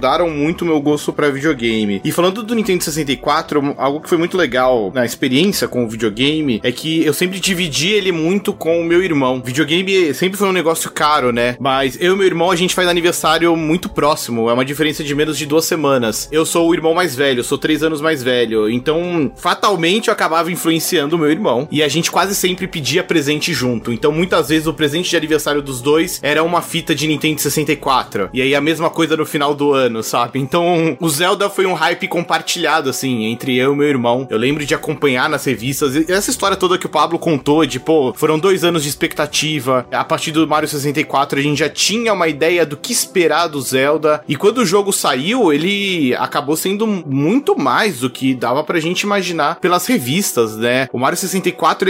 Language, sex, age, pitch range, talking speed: Portuguese, male, 20-39, 145-180 Hz, 210 wpm